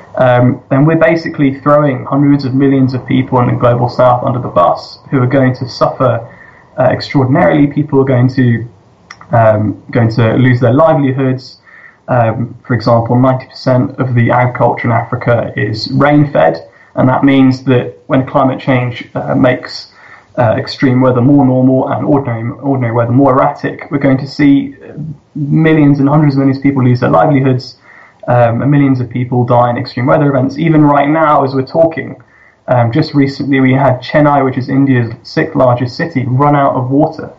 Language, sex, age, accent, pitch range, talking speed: English, male, 20-39, British, 125-140 Hz, 180 wpm